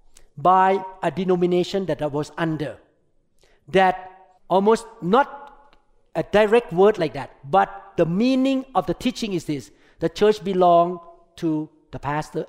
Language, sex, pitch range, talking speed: English, male, 150-200 Hz, 140 wpm